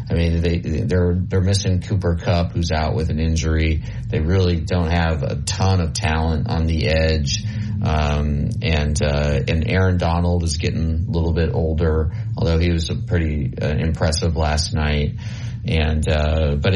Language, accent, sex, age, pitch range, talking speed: English, American, male, 30-49, 80-100 Hz, 170 wpm